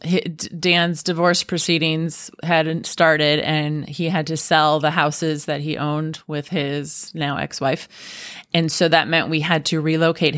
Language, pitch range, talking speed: English, 155-185 Hz, 155 wpm